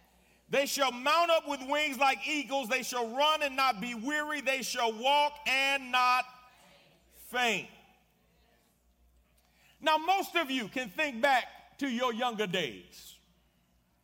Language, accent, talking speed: English, American, 135 wpm